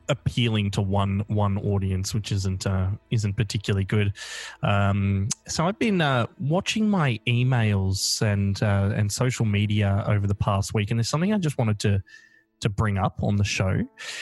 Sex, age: male, 20-39